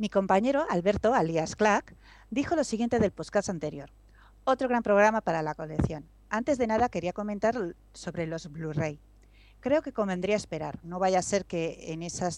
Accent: Spanish